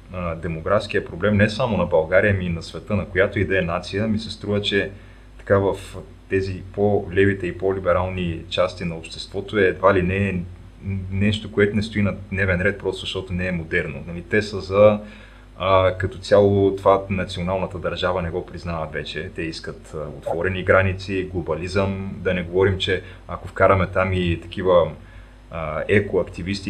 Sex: male